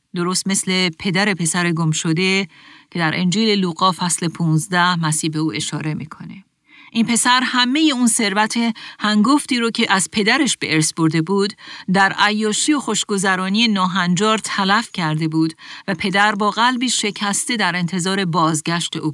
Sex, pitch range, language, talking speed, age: female, 170-215 Hz, Persian, 145 wpm, 40-59